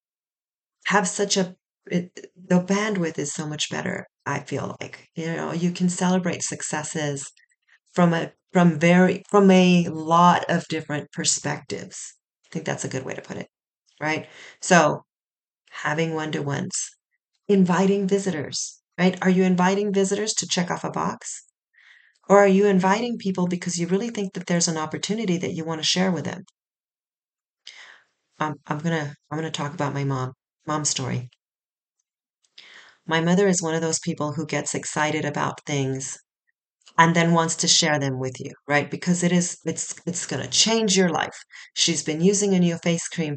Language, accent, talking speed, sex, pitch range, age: English, American, 170 wpm, female, 155-185 Hz, 30-49